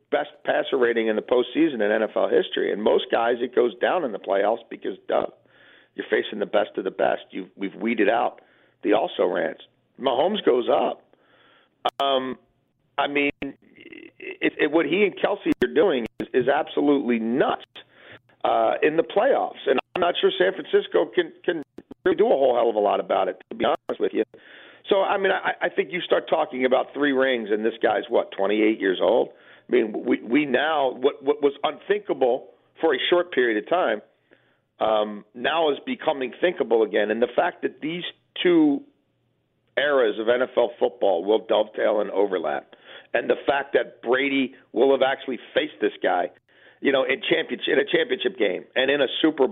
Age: 40-59